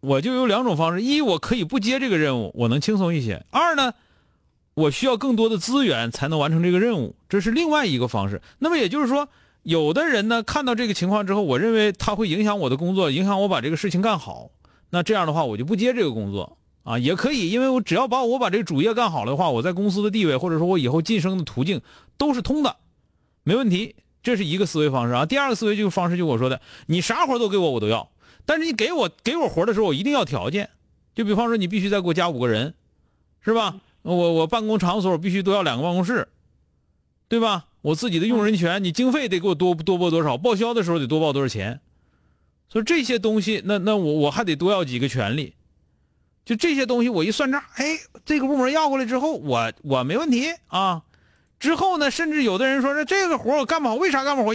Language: Chinese